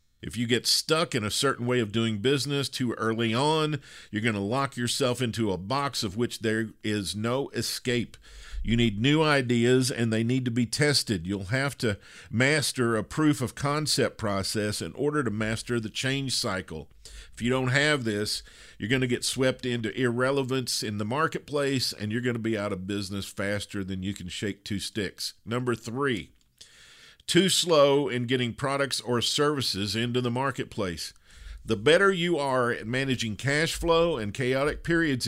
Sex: male